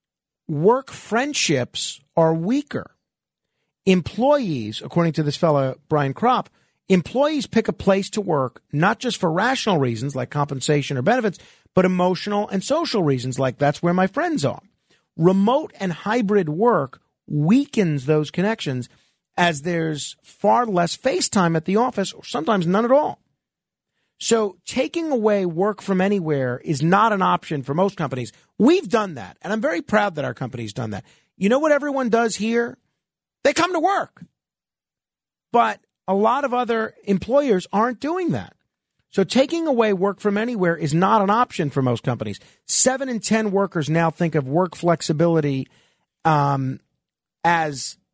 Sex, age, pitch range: male, 40-59, 155-225 Hz